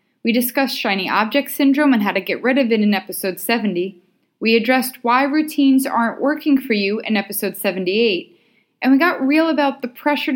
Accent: American